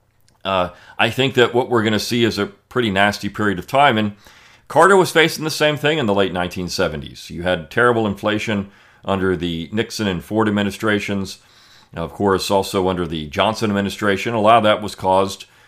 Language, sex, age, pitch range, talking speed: English, male, 40-59, 95-115 Hz, 190 wpm